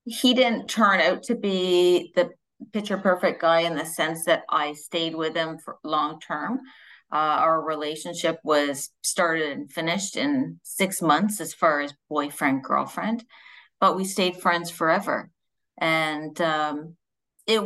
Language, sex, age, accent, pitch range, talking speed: English, female, 40-59, American, 155-195 Hz, 150 wpm